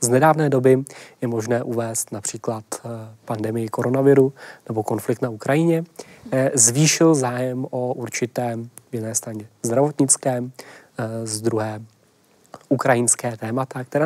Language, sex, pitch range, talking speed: Czech, male, 115-135 Hz, 110 wpm